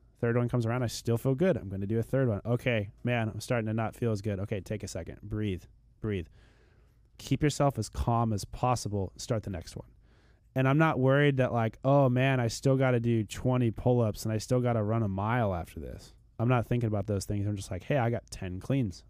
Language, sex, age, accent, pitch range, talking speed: English, male, 20-39, American, 110-125 Hz, 250 wpm